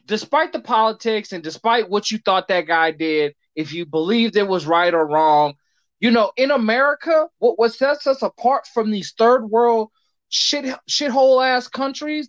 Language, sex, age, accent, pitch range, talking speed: English, male, 20-39, American, 195-275 Hz, 175 wpm